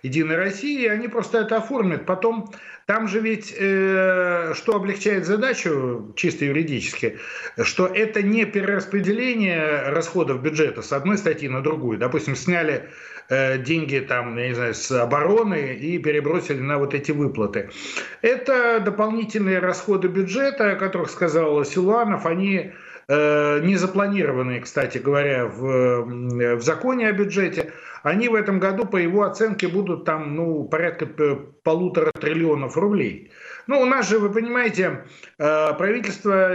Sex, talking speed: male, 130 wpm